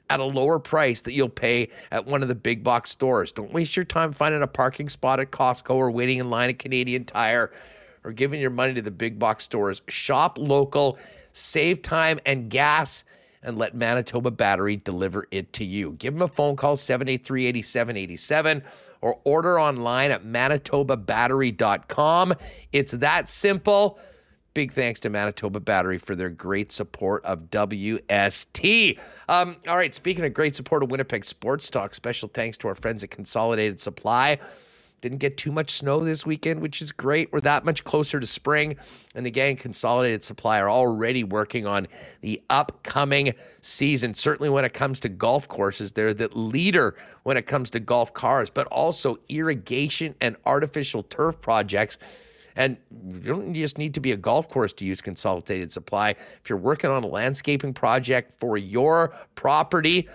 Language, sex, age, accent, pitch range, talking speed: English, male, 50-69, American, 115-145 Hz, 170 wpm